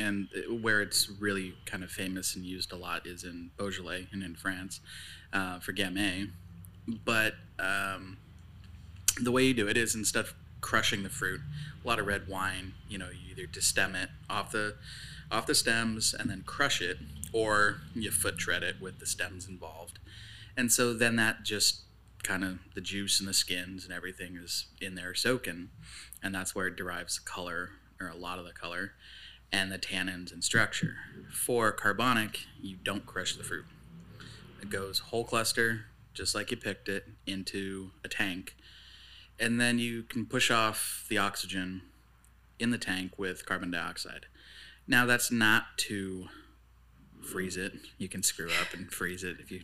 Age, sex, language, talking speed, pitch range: 20-39, male, English, 180 wpm, 90-110 Hz